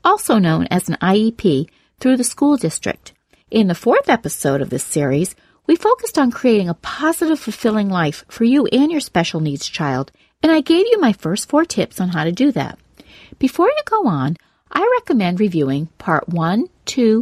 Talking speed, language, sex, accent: 190 wpm, English, female, American